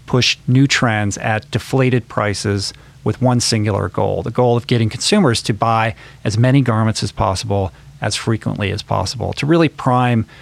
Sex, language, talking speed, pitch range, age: male, English, 165 wpm, 115-145 Hz, 40-59